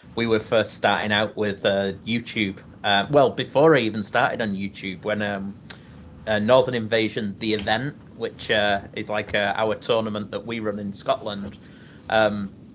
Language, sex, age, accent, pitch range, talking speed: English, male, 30-49, British, 100-130 Hz, 170 wpm